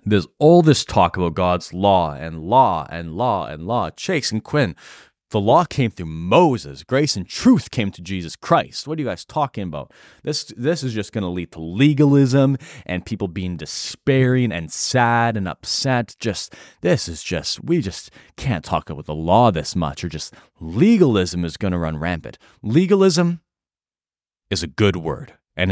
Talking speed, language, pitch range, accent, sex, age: 180 wpm, English, 80-120 Hz, American, male, 30-49